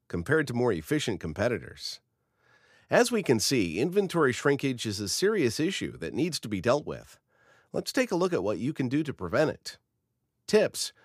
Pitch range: 100-145 Hz